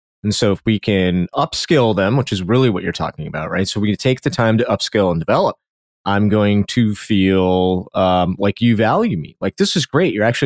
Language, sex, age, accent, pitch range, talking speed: English, male, 30-49, American, 100-140 Hz, 230 wpm